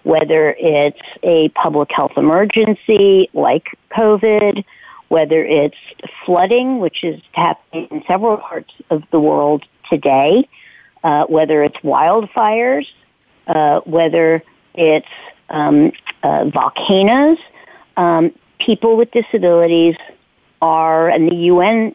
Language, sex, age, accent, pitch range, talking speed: English, female, 50-69, American, 155-205 Hz, 105 wpm